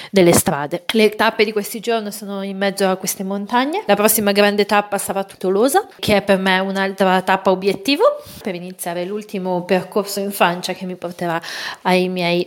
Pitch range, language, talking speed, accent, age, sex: 185-215 Hz, Italian, 180 wpm, native, 30-49, female